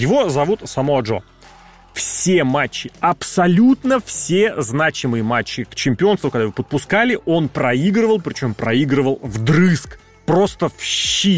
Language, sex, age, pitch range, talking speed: Russian, male, 30-49, 135-200 Hz, 115 wpm